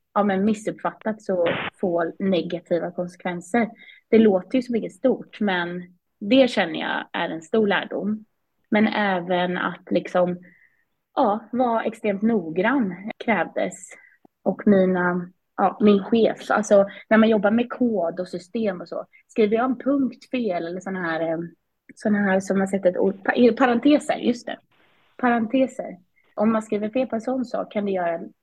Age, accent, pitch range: 20-39, native, 175-225 Hz